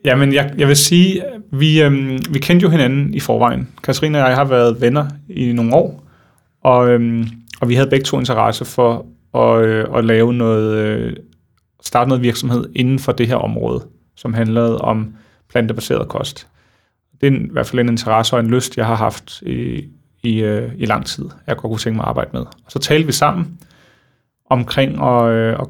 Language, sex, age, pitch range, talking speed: Danish, male, 30-49, 115-135 Hz, 190 wpm